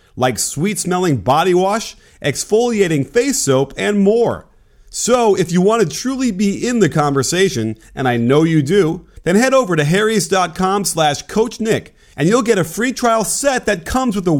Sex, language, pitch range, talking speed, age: male, English, 130-205 Hz, 175 wpm, 30-49